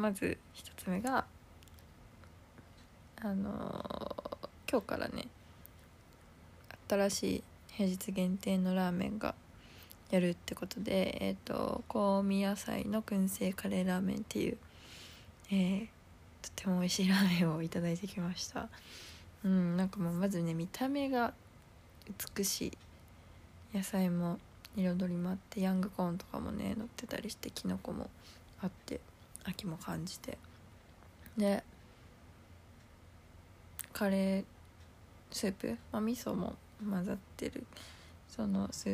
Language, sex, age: Japanese, female, 20-39